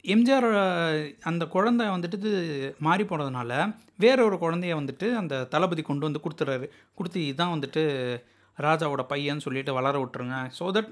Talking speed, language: 135 wpm, Tamil